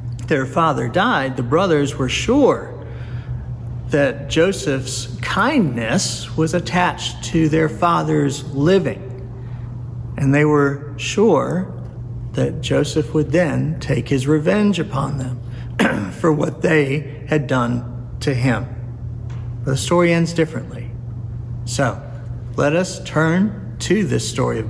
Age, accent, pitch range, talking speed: 50-69, American, 120-150 Hz, 115 wpm